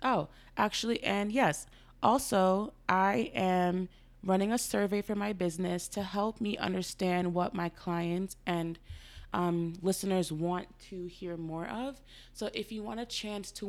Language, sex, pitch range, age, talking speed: English, female, 170-205 Hz, 20-39, 155 wpm